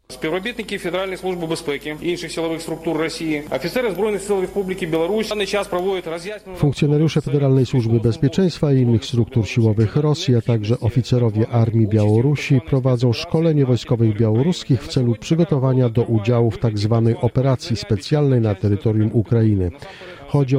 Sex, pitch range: male, 110-145 Hz